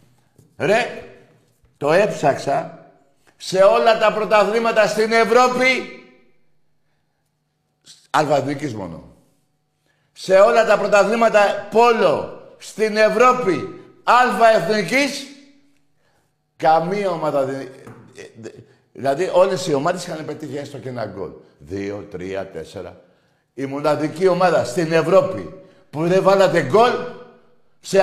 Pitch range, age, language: 135-210 Hz, 60-79, Greek